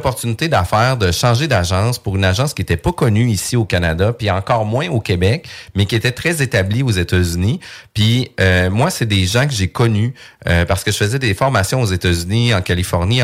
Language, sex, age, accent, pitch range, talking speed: French, male, 40-59, Canadian, 95-125 Hz, 215 wpm